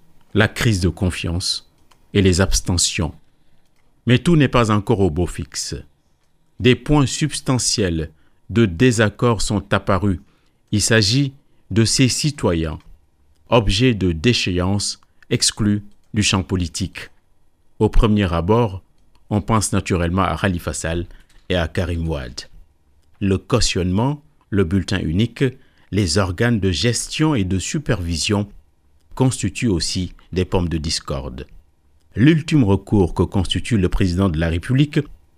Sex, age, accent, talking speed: male, 50-69, French, 125 wpm